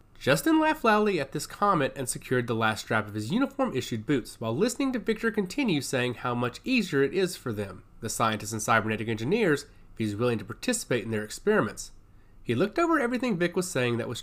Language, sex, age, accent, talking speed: English, male, 30-49, American, 210 wpm